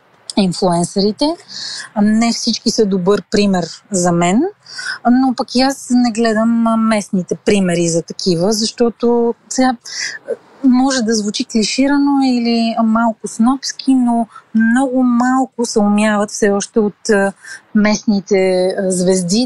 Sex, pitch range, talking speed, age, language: female, 195-240 Hz, 115 wpm, 30-49, Bulgarian